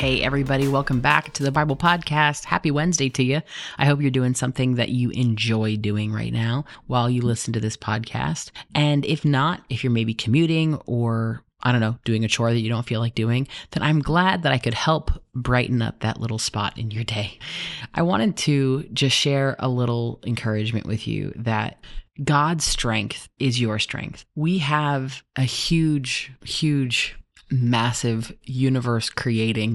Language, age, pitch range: English, 30-49, 115-140 Hz